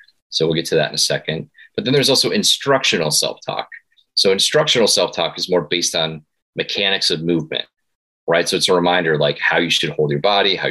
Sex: male